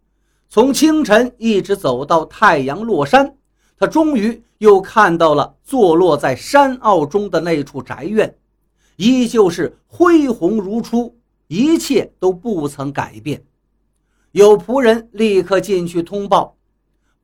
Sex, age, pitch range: male, 50-69, 165-240 Hz